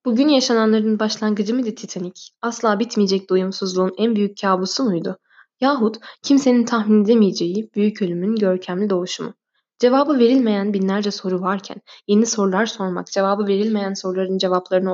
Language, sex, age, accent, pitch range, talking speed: Turkish, female, 10-29, native, 190-235 Hz, 135 wpm